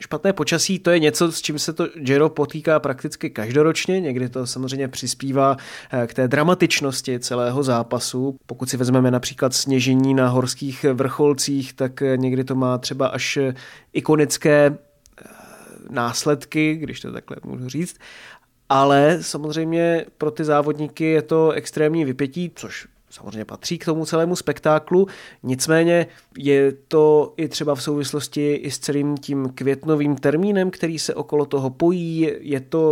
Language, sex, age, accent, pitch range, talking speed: Czech, male, 30-49, native, 130-155 Hz, 145 wpm